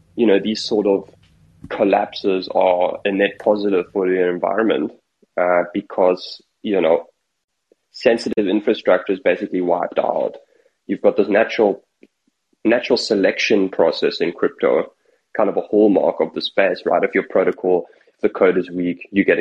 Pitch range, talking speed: 95-145 Hz, 155 wpm